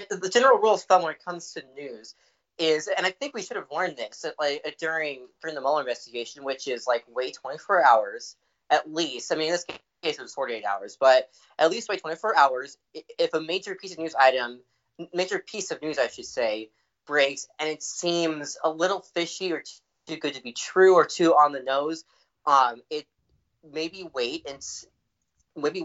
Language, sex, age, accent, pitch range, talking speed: English, male, 20-39, American, 135-180 Hz, 200 wpm